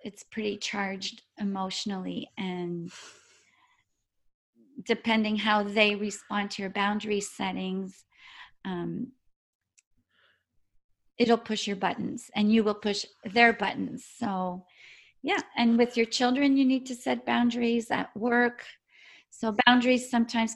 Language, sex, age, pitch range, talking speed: English, female, 40-59, 205-245 Hz, 115 wpm